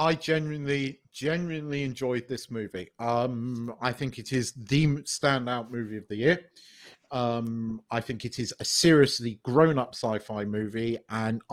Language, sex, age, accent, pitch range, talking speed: English, male, 40-59, British, 115-150 Hz, 145 wpm